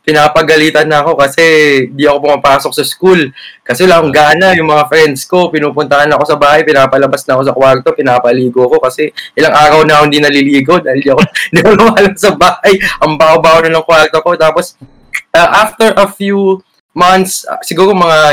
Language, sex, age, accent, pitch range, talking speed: Filipino, male, 20-39, native, 145-180 Hz, 180 wpm